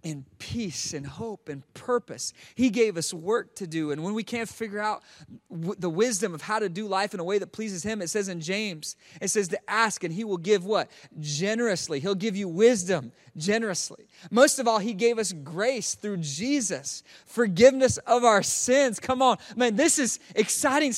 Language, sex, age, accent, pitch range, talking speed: English, male, 30-49, American, 205-290 Hz, 195 wpm